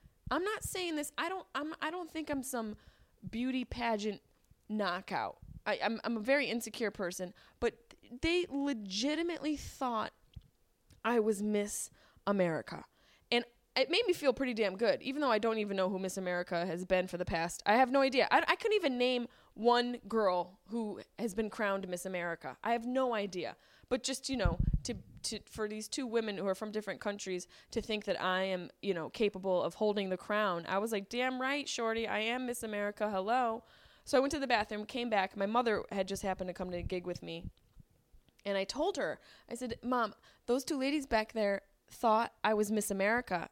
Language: English